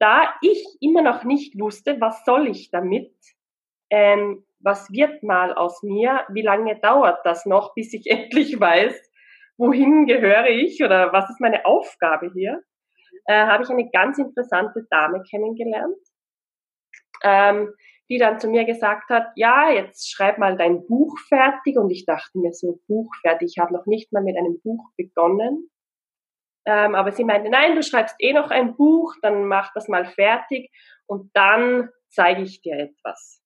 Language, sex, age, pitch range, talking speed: German, female, 20-39, 195-265 Hz, 165 wpm